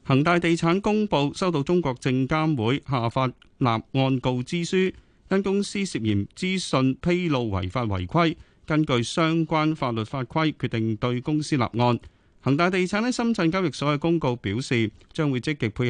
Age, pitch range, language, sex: 30-49, 115-155 Hz, Chinese, male